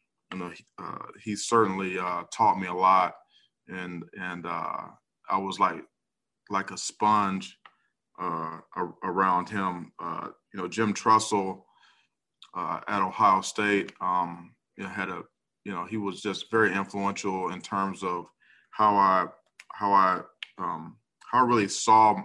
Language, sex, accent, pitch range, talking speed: English, male, American, 95-105 Hz, 145 wpm